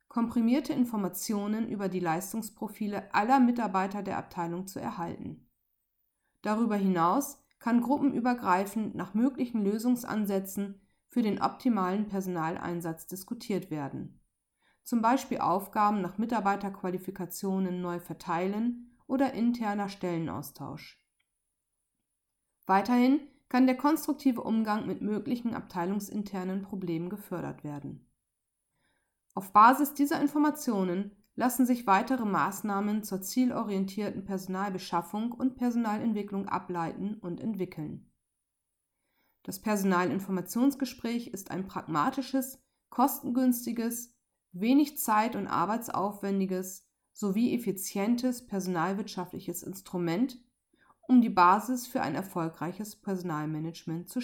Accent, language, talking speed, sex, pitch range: German, German, 90 wpm, female, 180-240 Hz